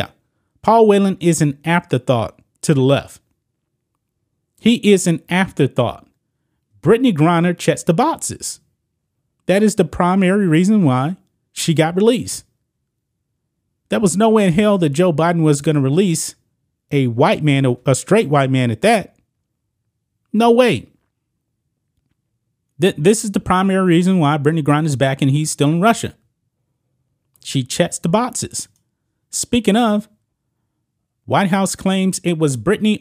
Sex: male